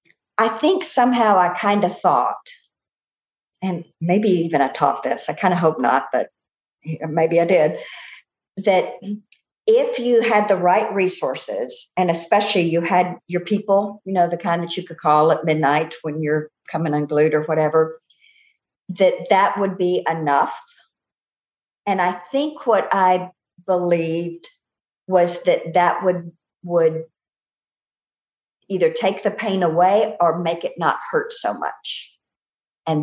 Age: 50-69